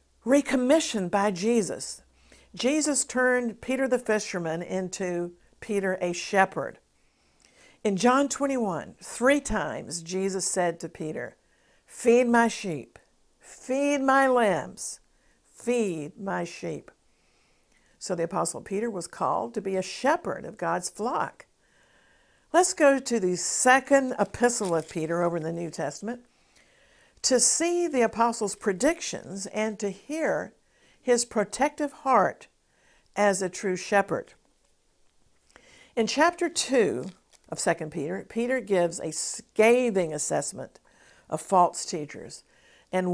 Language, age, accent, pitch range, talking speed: English, 50-69, American, 180-250 Hz, 120 wpm